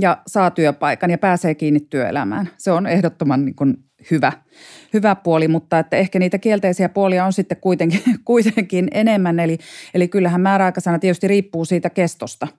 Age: 30-49